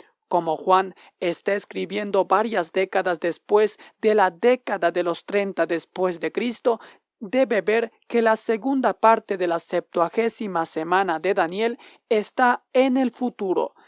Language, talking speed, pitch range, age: Spanish, 140 wpm, 185-240 Hz, 40-59